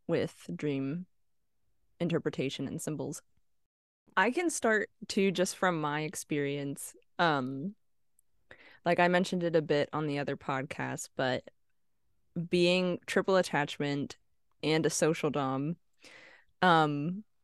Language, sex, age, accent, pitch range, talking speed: English, female, 20-39, American, 145-170 Hz, 115 wpm